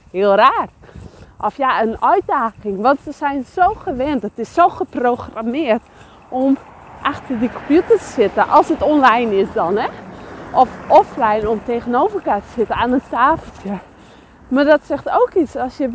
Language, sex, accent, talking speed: English, female, Dutch, 170 wpm